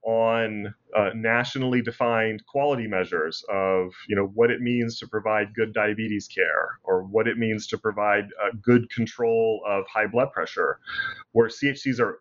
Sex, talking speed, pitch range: male, 160 wpm, 105-125 Hz